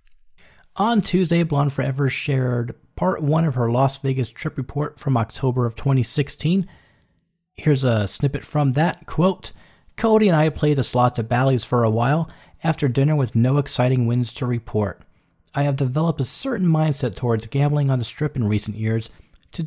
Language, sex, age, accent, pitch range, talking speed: English, male, 40-59, American, 120-160 Hz, 175 wpm